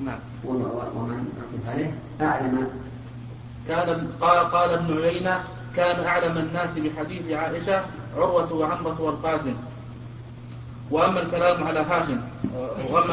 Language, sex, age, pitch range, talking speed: Arabic, male, 30-49, 150-175 Hz, 95 wpm